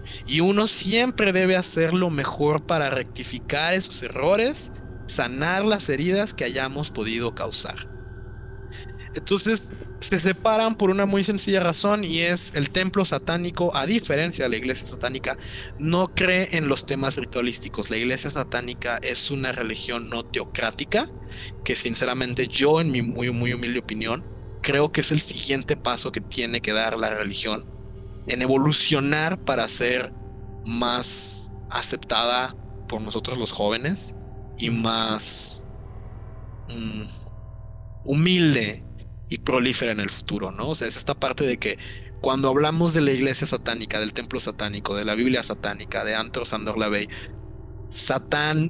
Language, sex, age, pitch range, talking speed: Spanish, male, 30-49, 110-150 Hz, 145 wpm